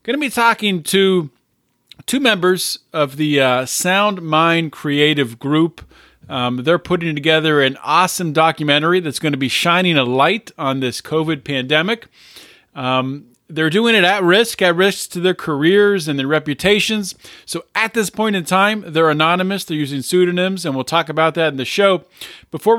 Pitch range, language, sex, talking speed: 150-200 Hz, English, male, 175 wpm